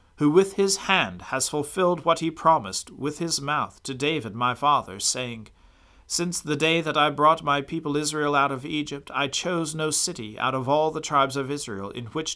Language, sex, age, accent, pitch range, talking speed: English, male, 40-59, American, 125-155 Hz, 205 wpm